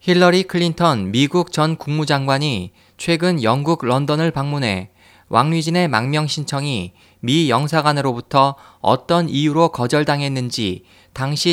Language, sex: Korean, male